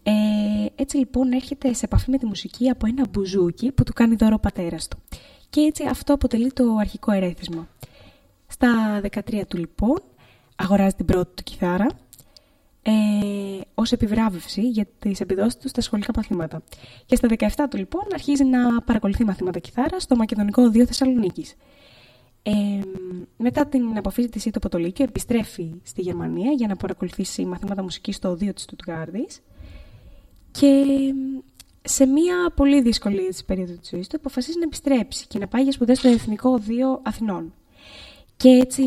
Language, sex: Greek, female